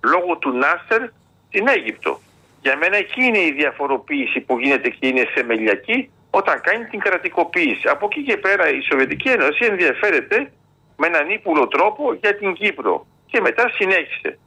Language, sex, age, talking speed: Greek, male, 50-69, 160 wpm